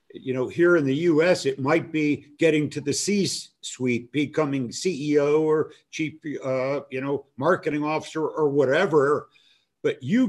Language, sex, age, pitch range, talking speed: English, male, 50-69, 145-185 Hz, 150 wpm